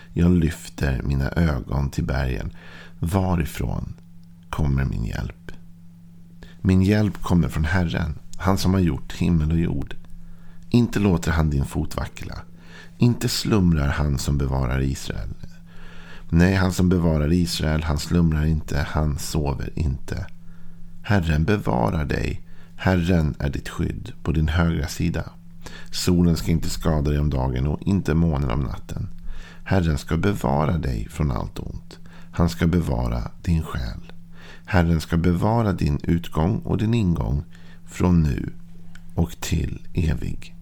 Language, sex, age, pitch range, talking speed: Swedish, male, 50-69, 80-90 Hz, 135 wpm